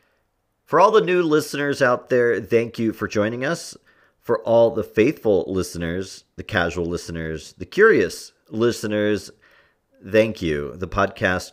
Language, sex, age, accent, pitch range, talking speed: English, male, 40-59, American, 90-115 Hz, 140 wpm